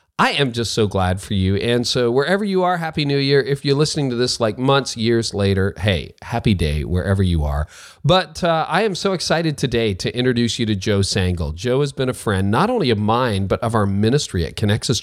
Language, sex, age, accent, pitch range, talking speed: English, male, 40-59, American, 100-135 Hz, 230 wpm